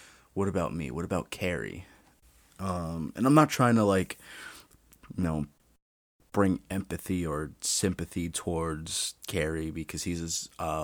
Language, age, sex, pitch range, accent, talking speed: English, 30-49, male, 75-95 Hz, American, 135 wpm